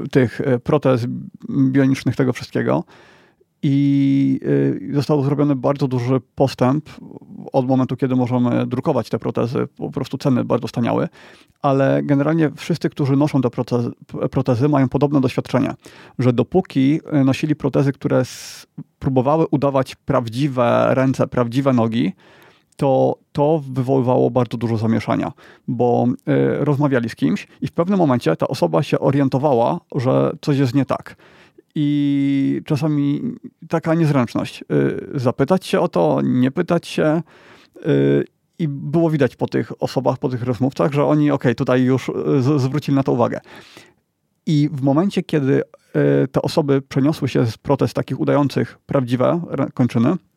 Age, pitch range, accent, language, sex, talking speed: 30-49, 125-150 Hz, native, Polish, male, 130 wpm